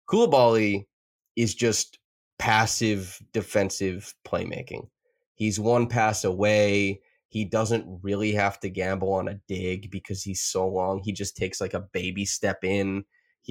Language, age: English, 20-39